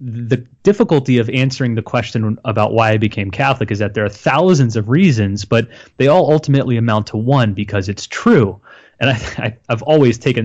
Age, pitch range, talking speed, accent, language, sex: 30-49, 110-140 Hz, 185 wpm, American, English, male